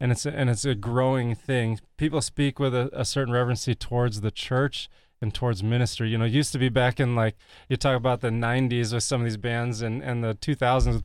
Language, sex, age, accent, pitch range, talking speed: English, male, 20-39, American, 115-135 Hz, 245 wpm